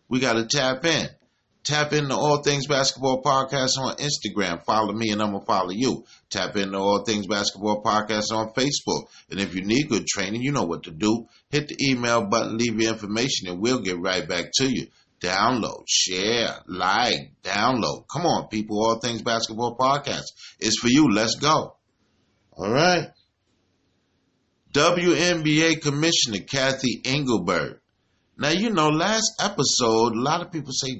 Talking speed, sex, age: 165 wpm, male, 30-49